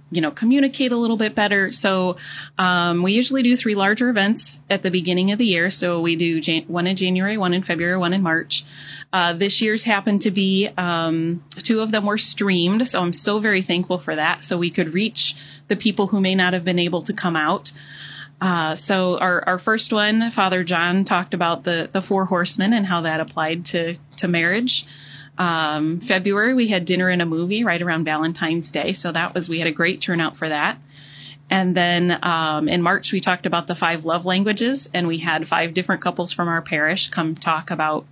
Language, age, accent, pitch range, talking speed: English, 30-49, American, 160-190 Hz, 215 wpm